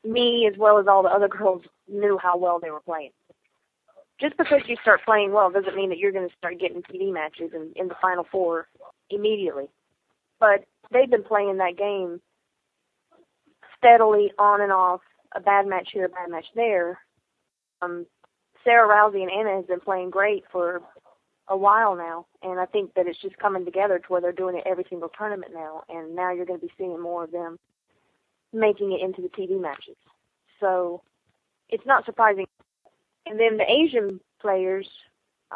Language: English